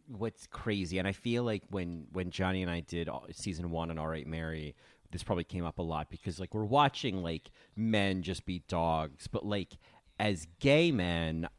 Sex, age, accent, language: male, 30-49, American, English